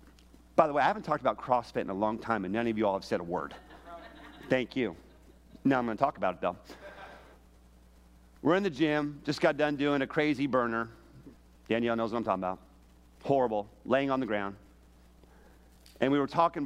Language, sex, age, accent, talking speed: English, male, 40-59, American, 205 wpm